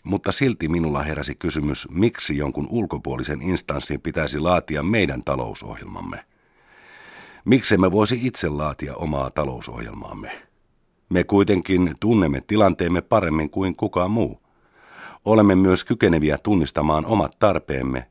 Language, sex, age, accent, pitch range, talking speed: Finnish, male, 50-69, native, 75-110 Hz, 115 wpm